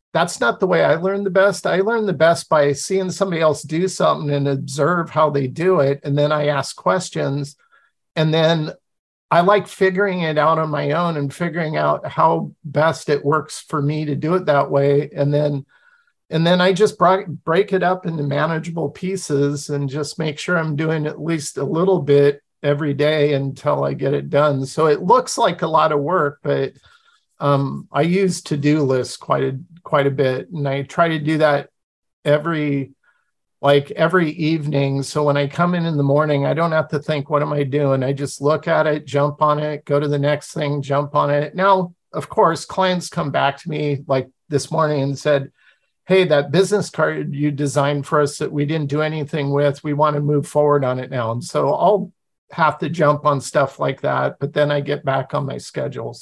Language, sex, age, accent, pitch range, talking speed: English, male, 50-69, American, 145-170 Hz, 210 wpm